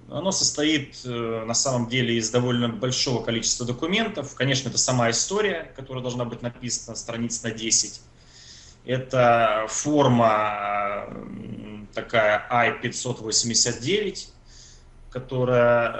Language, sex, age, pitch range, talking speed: Russian, male, 20-39, 100-130 Hz, 100 wpm